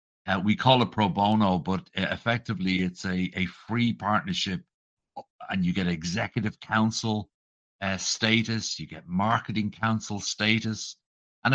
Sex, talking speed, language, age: male, 140 wpm, English, 60-79